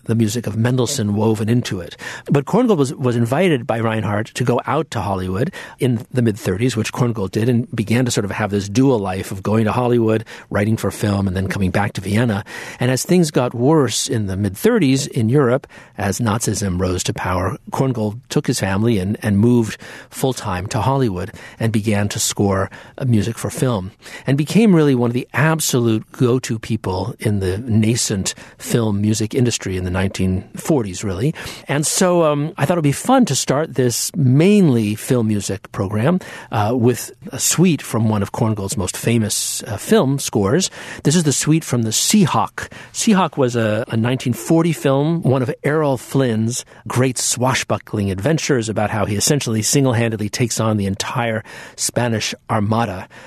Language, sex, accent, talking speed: English, male, American, 175 wpm